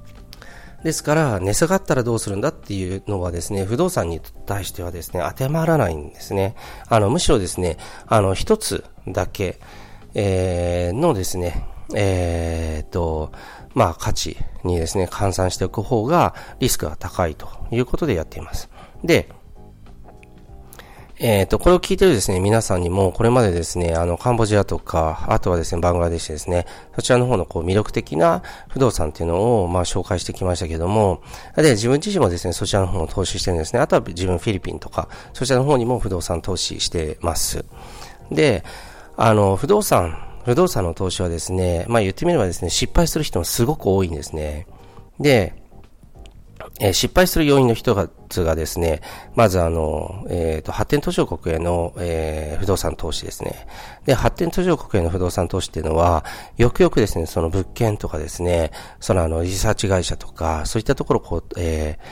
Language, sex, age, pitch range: Japanese, male, 40-59, 85-115 Hz